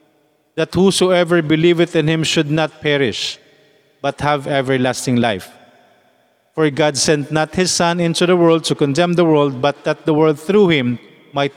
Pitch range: 145-180 Hz